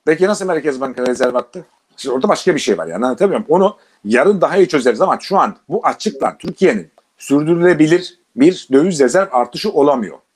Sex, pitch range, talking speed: male, 135-210 Hz, 180 wpm